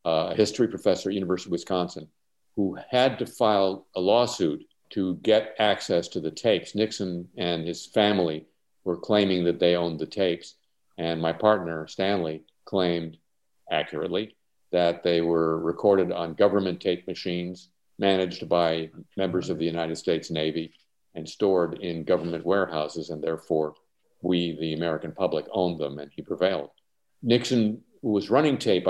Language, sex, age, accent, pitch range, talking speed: English, male, 50-69, American, 80-95 Hz, 150 wpm